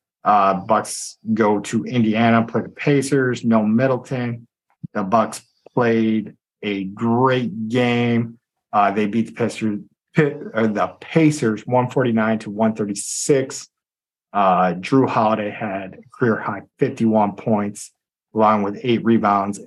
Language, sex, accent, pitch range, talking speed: English, male, American, 105-130 Hz, 115 wpm